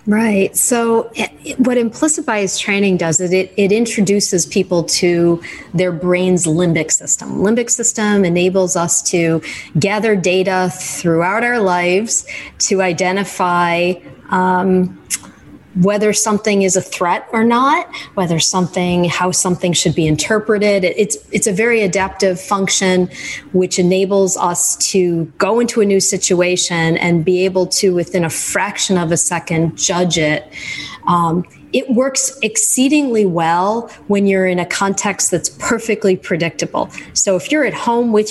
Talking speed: 145 wpm